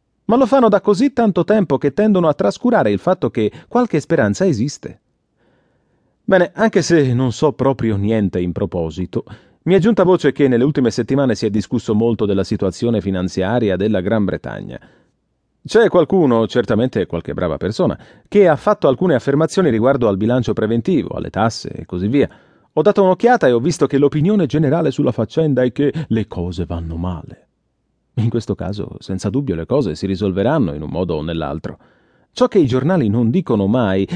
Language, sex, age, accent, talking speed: English, male, 30-49, Italian, 180 wpm